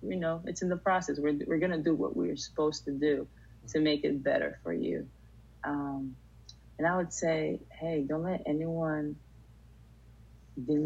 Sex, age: female, 20-39